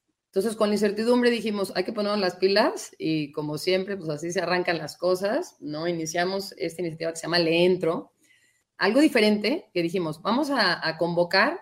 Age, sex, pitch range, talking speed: 30-49, female, 165-210 Hz, 185 wpm